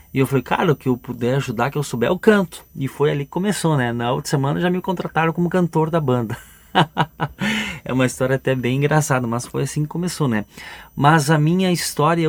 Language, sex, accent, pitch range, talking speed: Portuguese, male, Brazilian, 110-140 Hz, 220 wpm